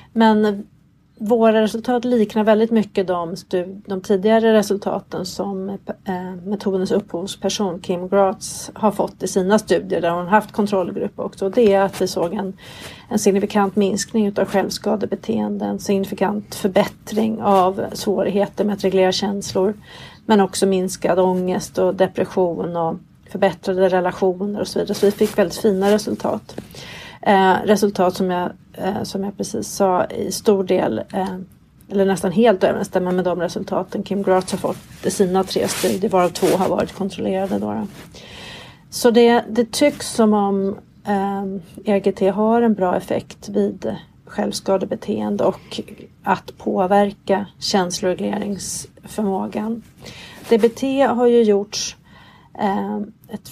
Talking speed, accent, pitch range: 130 wpm, Swedish, 185-210 Hz